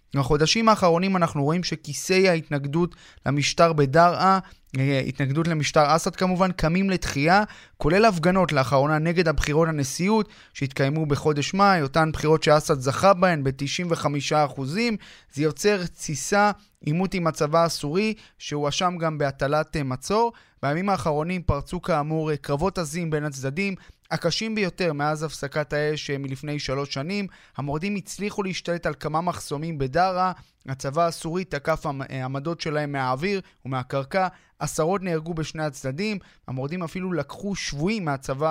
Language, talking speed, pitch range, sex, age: Hebrew, 125 wpm, 145-180 Hz, male, 20-39